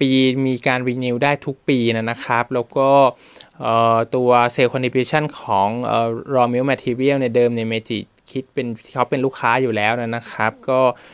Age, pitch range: 20-39, 115-135 Hz